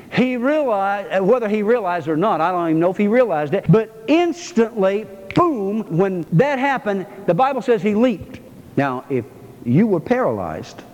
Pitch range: 175-270 Hz